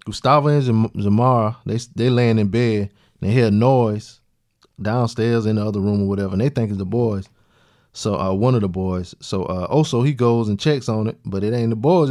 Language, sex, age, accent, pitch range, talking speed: English, male, 20-39, American, 100-120 Hz, 230 wpm